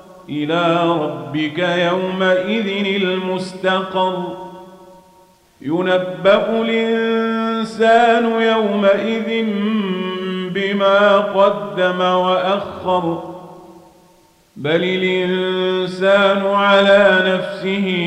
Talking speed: 45 wpm